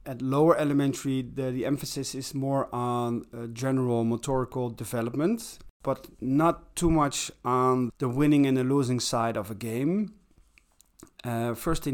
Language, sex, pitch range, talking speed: English, male, 120-145 Hz, 150 wpm